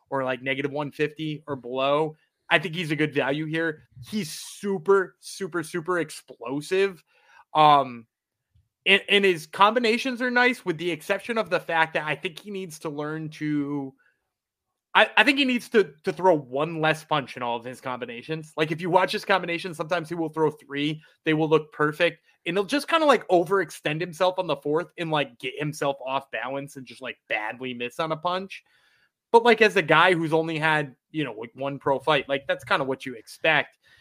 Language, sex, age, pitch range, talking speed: English, male, 20-39, 140-180 Hz, 205 wpm